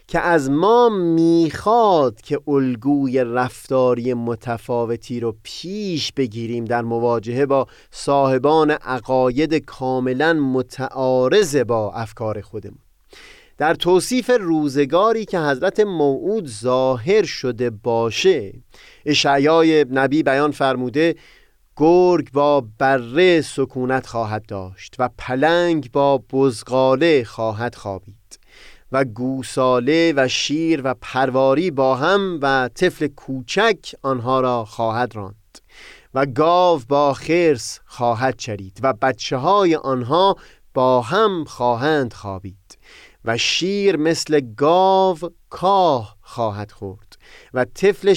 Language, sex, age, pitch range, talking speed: Persian, male, 30-49, 120-160 Hz, 105 wpm